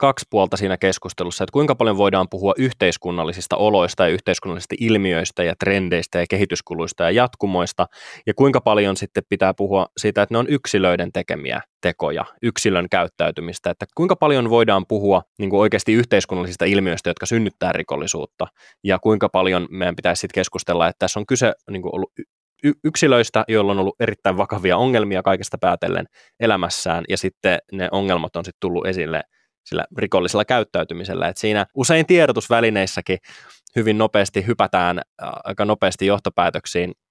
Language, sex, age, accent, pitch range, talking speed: Finnish, male, 20-39, native, 95-110 Hz, 140 wpm